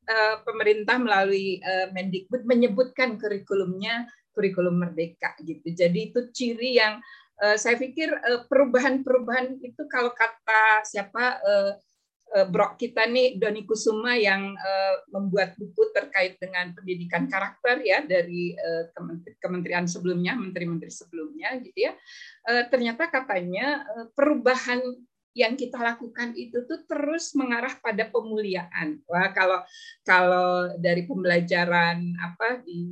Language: Indonesian